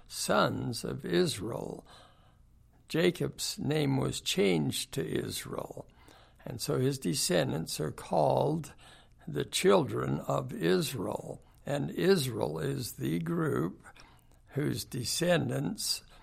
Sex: male